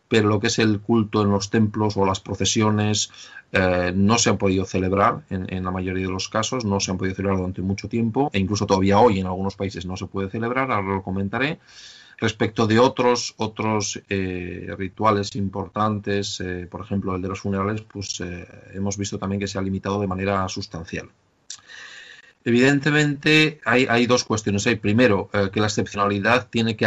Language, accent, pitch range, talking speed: Spanish, Spanish, 95-115 Hz, 190 wpm